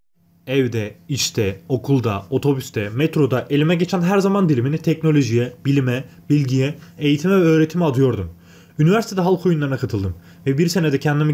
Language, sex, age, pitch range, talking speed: Turkish, male, 30-49, 130-165 Hz, 130 wpm